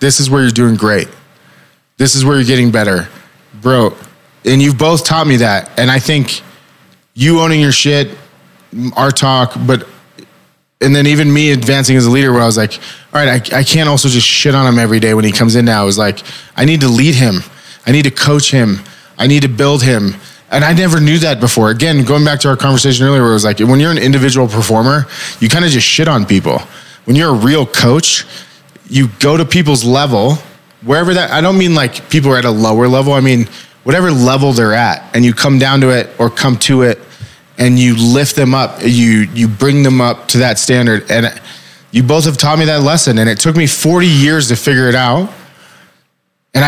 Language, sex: English, male